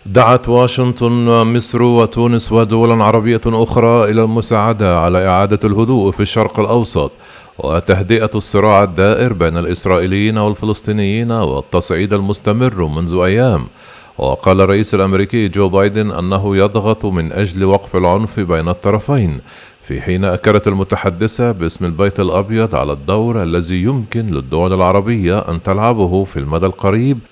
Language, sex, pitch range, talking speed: Arabic, male, 95-115 Hz, 125 wpm